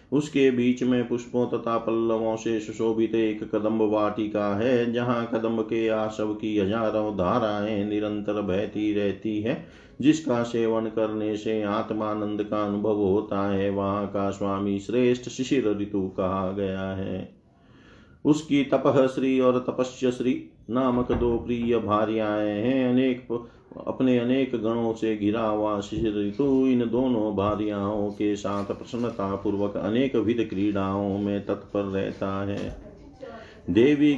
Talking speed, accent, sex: 130 wpm, native, male